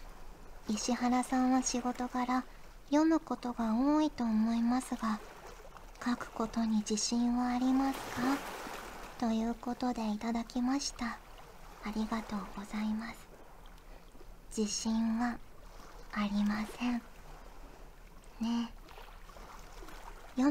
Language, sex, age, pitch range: Japanese, male, 40-59, 215-245 Hz